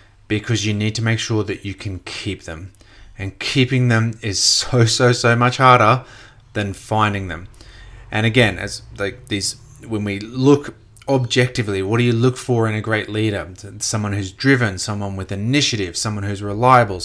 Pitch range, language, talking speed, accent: 100-120 Hz, English, 175 wpm, Australian